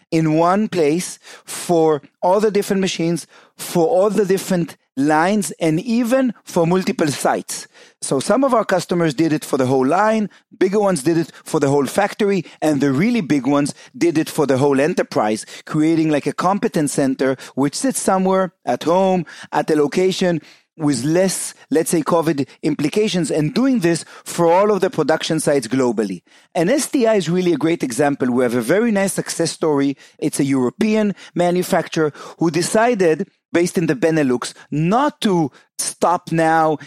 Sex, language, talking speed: male, English, 170 wpm